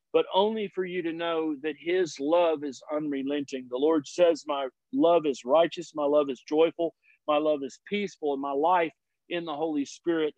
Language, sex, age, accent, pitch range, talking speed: English, male, 50-69, American, 160-190 Hz, 190 wpm